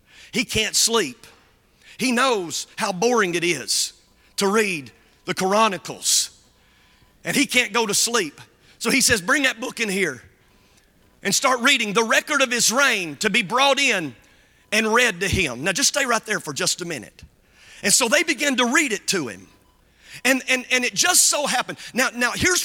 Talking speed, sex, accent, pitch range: 190 wpm, male, American, 195-275 Hz